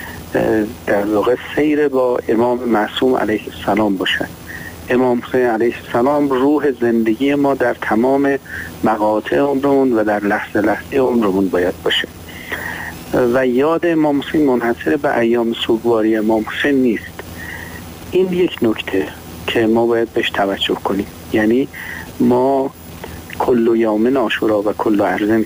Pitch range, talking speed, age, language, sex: 95-130 Hz, 125 wpm, 50-69, Persian, male